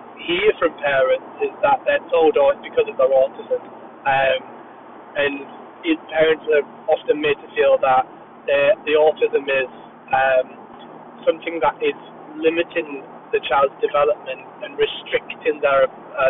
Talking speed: 135 wpm